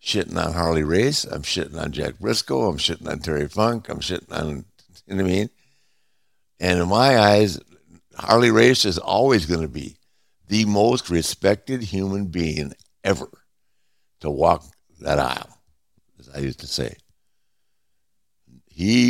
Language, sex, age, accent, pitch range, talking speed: English, male, 60-79, American, 80-100 Hz, 155 wpm